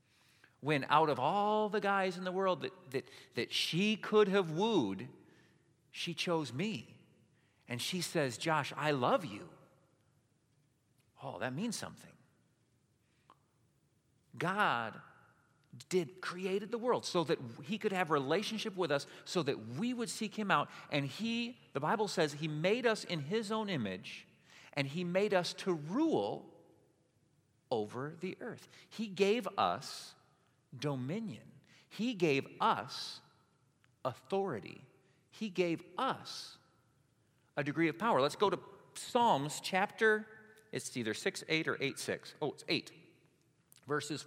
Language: English